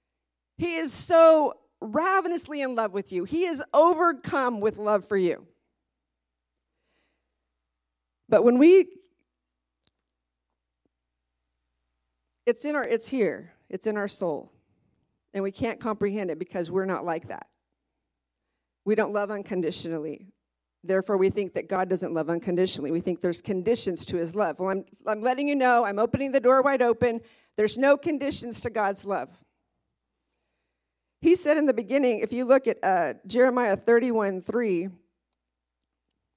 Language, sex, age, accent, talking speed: English, female, 40-59, American, 140 wpm